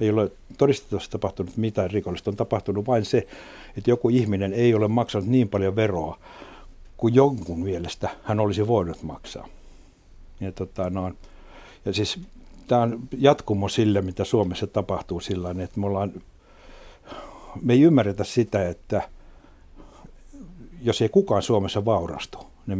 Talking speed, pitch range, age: 135 wpm, 95-115 Hz, 60-79